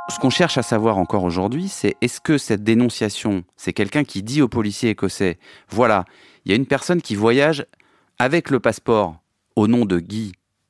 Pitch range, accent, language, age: 100-135 Hz, French, French, 30-49